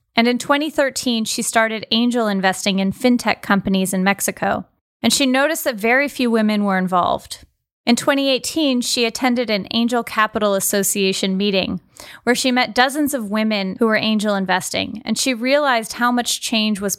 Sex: female